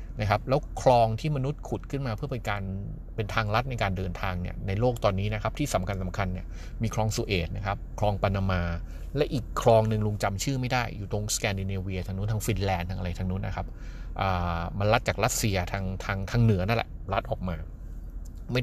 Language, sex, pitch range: Thai, male, 90-120 Hz